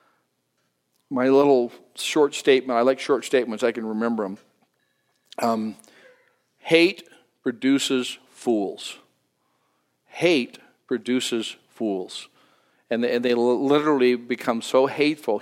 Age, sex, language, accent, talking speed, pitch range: 50-69, male, English, American, 100 wpm, 115-135 Hz